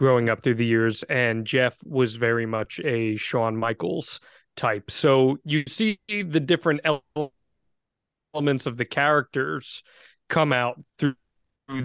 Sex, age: male, 30-49